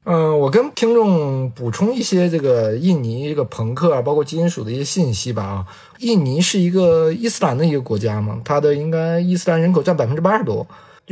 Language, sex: Chinese, male